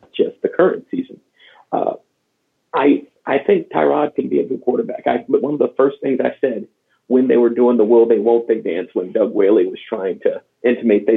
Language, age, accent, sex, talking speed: English, 40-59, American, male, 220 wpm